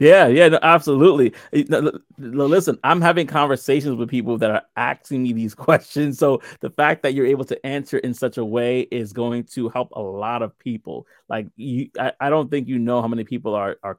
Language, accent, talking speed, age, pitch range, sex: English, American, 215 wpm, 30-49, 115-145 Hz, male